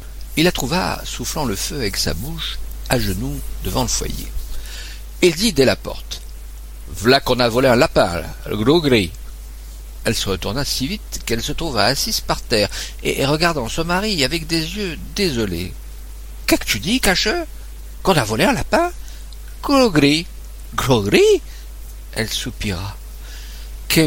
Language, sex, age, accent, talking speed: French, male, 60-79, French, 160 wpm